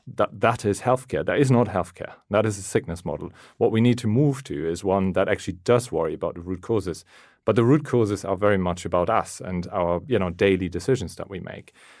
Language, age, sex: English, 40-59, male